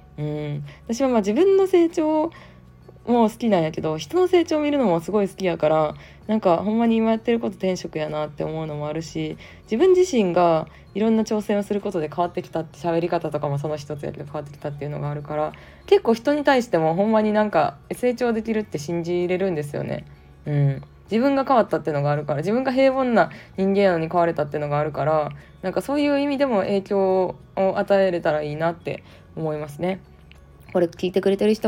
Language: Japanese